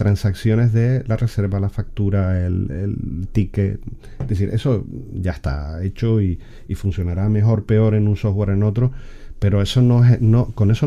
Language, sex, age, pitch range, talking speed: Spanish, male, 40-59, 95-120 Hz, 175 wpm